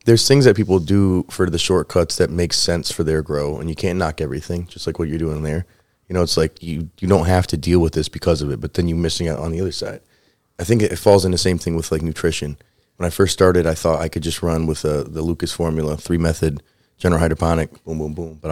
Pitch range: 80-100 Hz